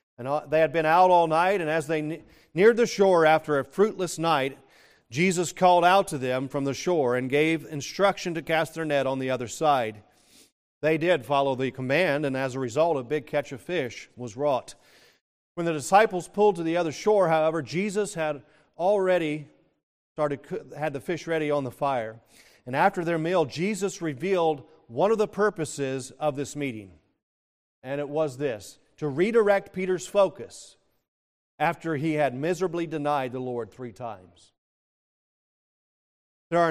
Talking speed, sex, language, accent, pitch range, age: 170 wpm, male, English, American, 130-175 Hz, 40-59